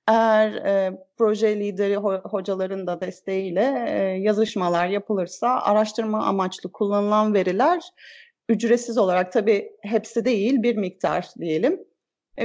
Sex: female